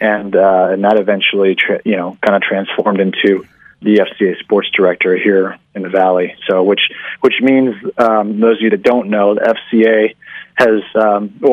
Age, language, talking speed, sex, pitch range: 30-49, English, 180 wpm, male, 105-120 Hz